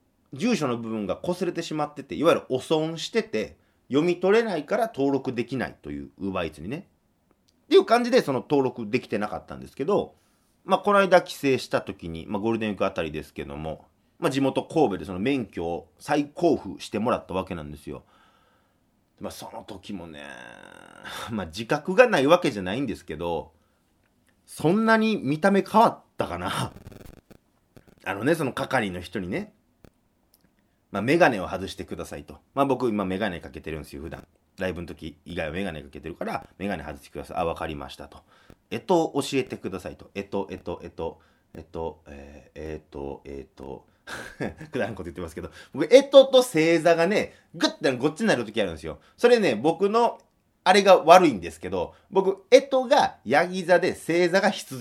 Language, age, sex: Japanese, 30-49, male